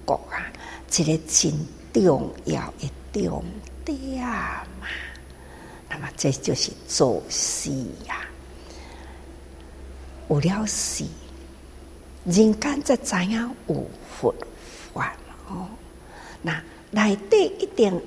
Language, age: Chinese, 60-79